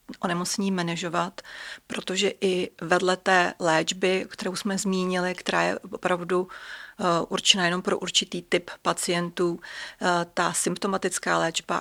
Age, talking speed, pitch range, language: 40-59, 120 wpm, 180-195 Hz, Czech